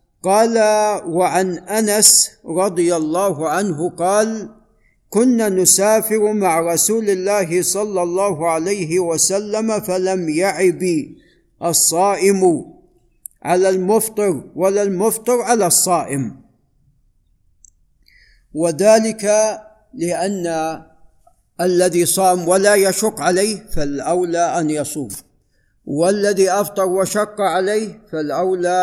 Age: 50-69